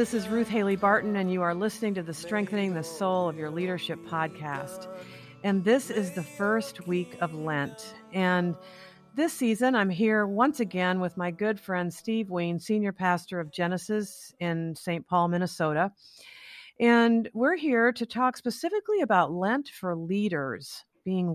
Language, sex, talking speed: English, female, 165 wpm